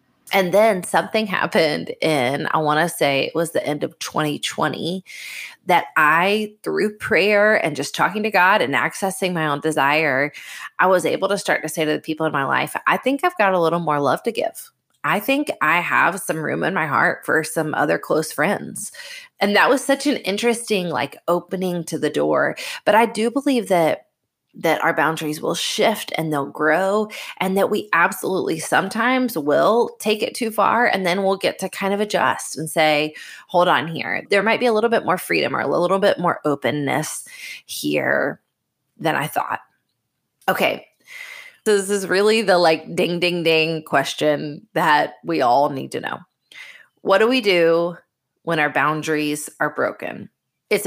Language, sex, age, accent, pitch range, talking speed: English, female, 20-39, American, 155-215 Hz, 185 wpm